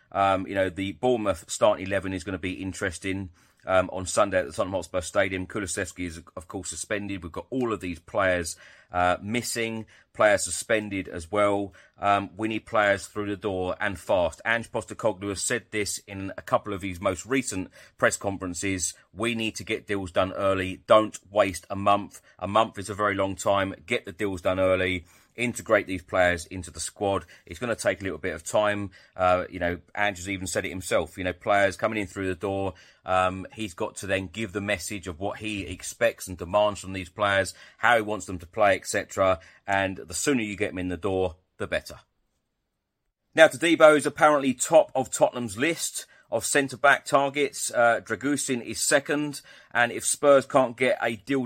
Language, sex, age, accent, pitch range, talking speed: English, male, 30-49, British, 95-115 Hz, 200 wpm